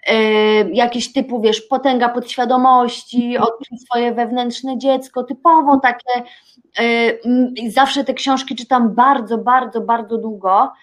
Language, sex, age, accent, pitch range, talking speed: Polish, female, 20-39, native, 230-265 Hz, 100 wpm